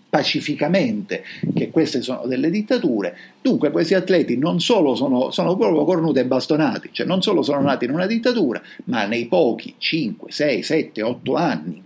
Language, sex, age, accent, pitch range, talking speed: Italian, male, 50-69, native, 115-185 Hz, 170 wpm